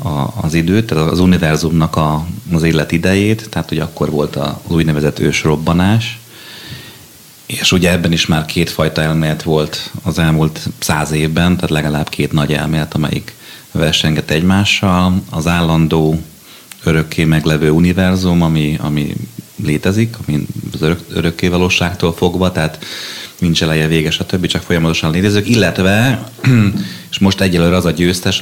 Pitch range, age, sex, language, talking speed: 80-95 Hz, 30-49, male, Hungarian, 135 wpm